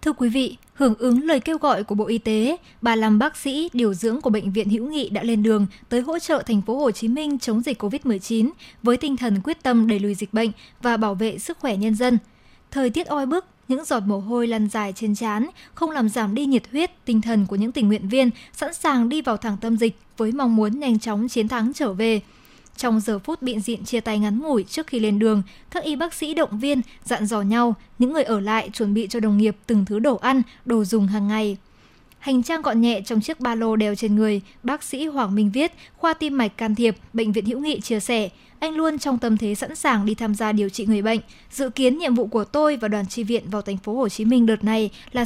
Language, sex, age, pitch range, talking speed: Vietnamese, male, 20-39, 215-270 Hz, 255 wpm